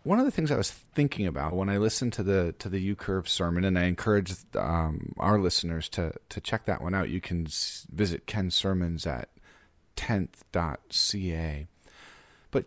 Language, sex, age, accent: English, male, 30-49, American